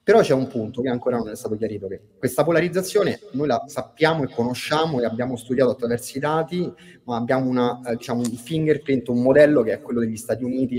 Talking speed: 210 wpm